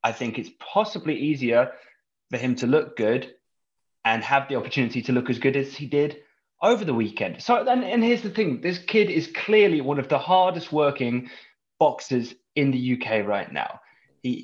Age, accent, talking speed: 20-39, British, 190 wpm